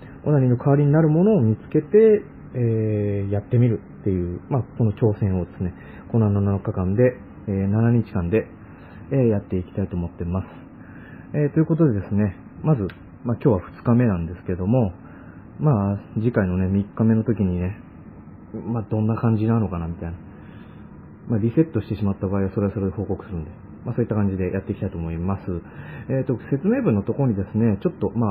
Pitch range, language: 95-120 Hz, Japanese